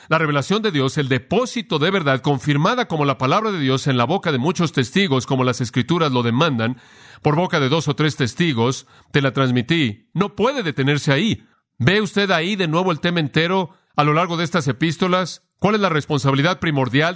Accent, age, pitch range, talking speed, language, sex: Mexican, 40-59, 135-180 Hz, 205 wpm, Spanish, male